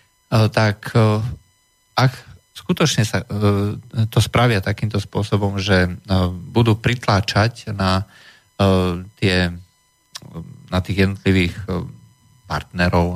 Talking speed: 80 wpm